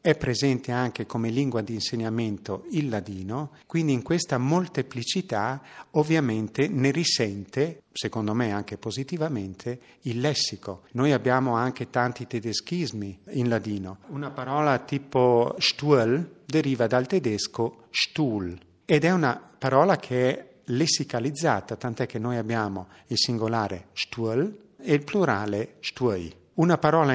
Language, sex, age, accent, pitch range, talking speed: Italian, male, 50-69, native, 115-155 Hz, 130 wpm